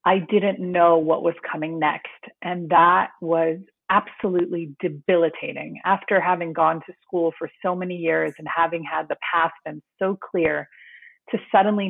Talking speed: 155 wpm